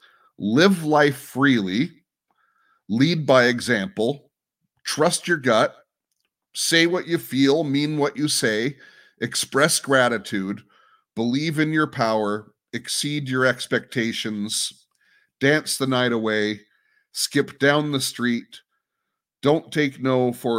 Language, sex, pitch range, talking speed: English, male, 110-140 Hz, 110 wpm